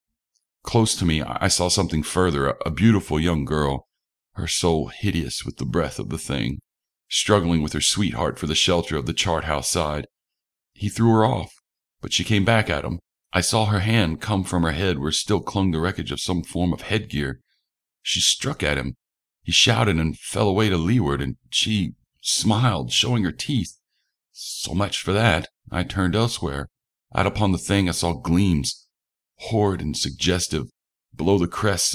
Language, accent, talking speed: English, American, 180 wpm